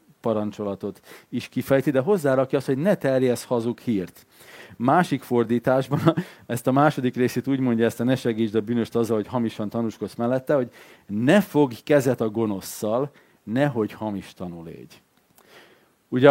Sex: male